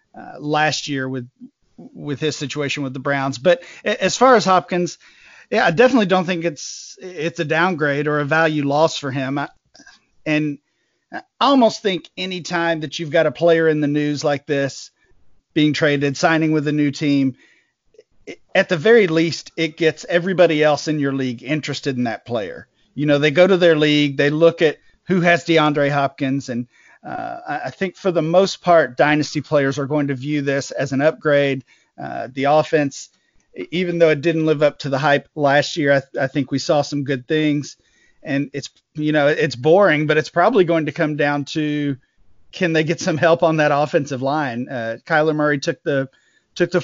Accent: American